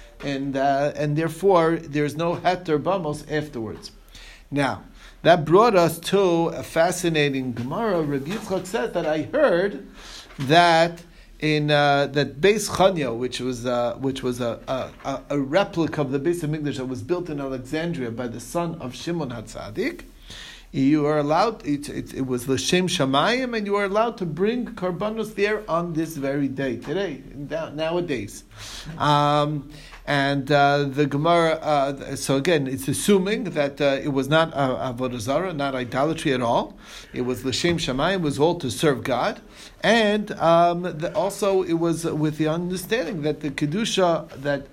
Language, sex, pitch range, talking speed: English, male, 140-175 Hz, 165 wpm